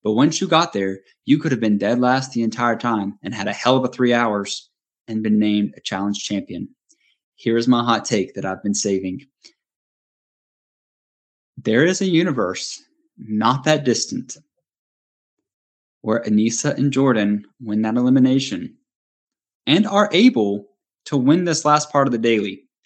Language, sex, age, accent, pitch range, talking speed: English, male, 20-39, American, 115-170 Hz, 165 wpm